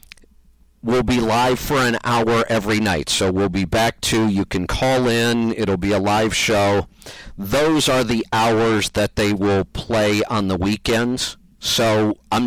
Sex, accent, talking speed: male, American, 170 wpm